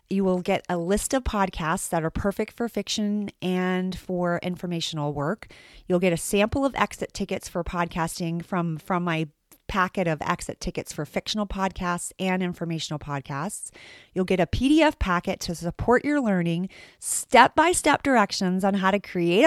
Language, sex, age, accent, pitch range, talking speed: English, female, 30-49, American, 175-230 Hz, 165 wpm